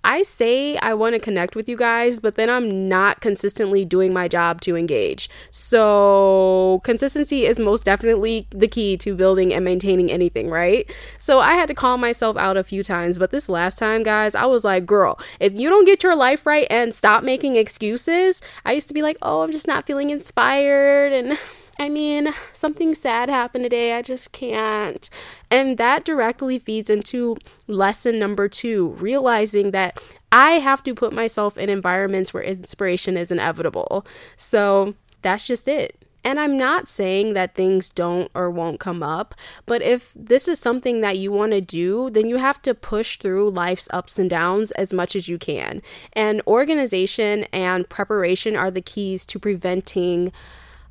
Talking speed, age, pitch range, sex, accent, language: 180 wpm, 10-29, 190-255 Hz, female, American, English